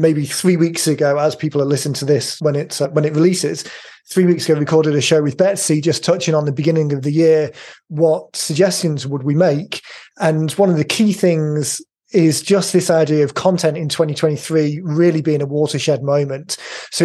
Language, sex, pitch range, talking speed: English, male, 150-170 Hz, 205 wpm